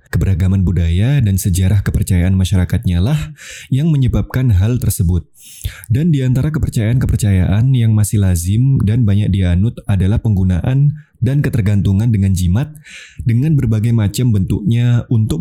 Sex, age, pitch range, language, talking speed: male, 20-39, 95-130 Hz, Indonesian, 120 wpm